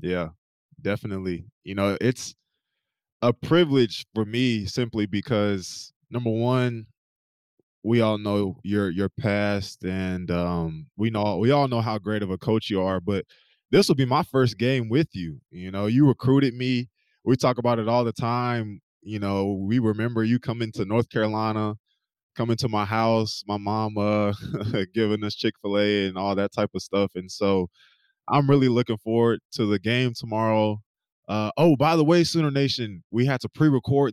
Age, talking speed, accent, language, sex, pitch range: 20-39, 175 wpm, American, English, male, 105-130 Hz